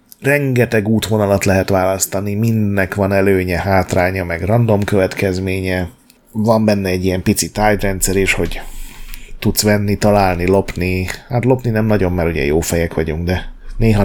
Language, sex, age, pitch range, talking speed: Hungarian, male, 30-49, 95-115 Hz, 145 wpm